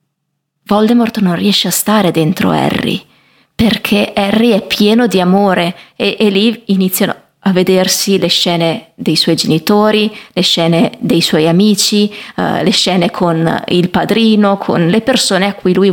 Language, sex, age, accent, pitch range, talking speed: Italian, female, 20-39, native, 180-220 Hz, 150 wpm